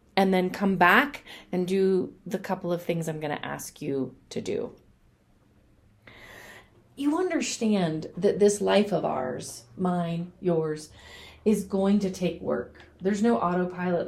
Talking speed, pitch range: 145 wpm, 160-215 Hz